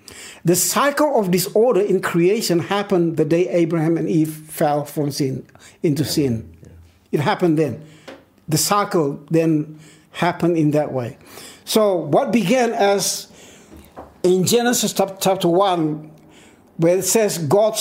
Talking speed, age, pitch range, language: 130 wpm, 60-79, 155-195 Hz, English